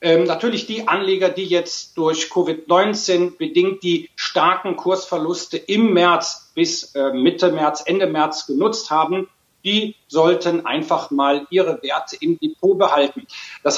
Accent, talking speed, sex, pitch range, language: German, 140 wpm, male, 165-195 Hz, German